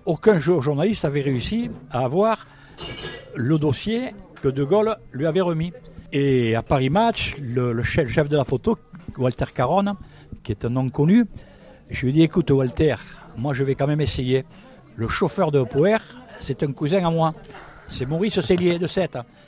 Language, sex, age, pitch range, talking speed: French, male, 60-79, 130-175 Hz, 180 wpm